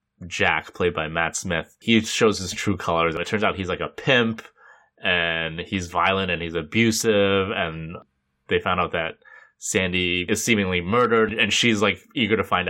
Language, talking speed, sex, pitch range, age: English, 180 wpm, male, 90-110 Hz, 20-39